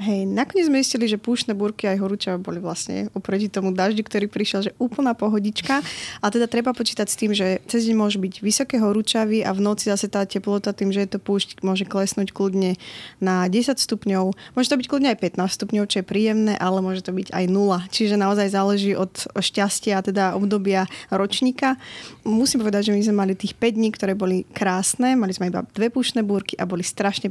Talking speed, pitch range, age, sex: 205 wpm, 195-230 Hz, 20-39, female